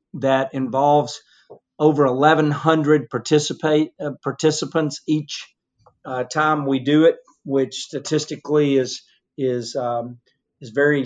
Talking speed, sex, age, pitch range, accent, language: 110 wpm, male, 50-69, 135-160 Hz, American, English